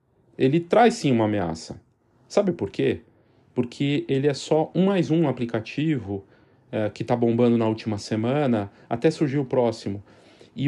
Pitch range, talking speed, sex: 115-135 Hz, 155 wpm, male